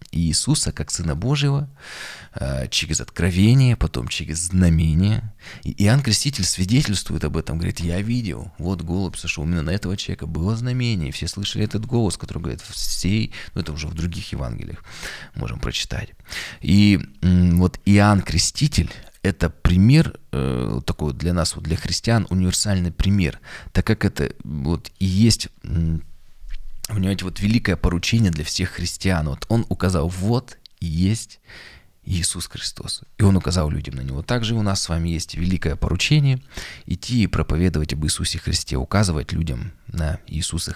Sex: male